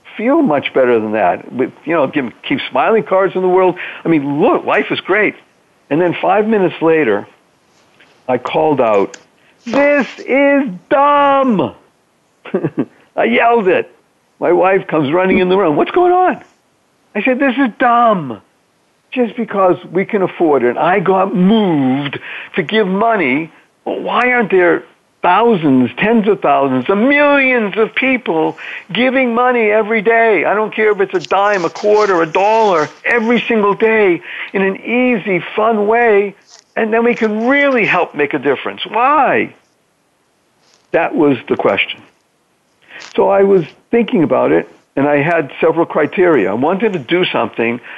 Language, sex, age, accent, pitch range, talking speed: English, male, 50-69, American, 170-235 Hz, 160 wpm